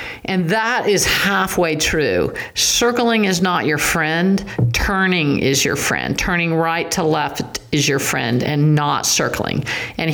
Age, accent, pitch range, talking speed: 50-69, American, 140-175 Hz, 150 wpm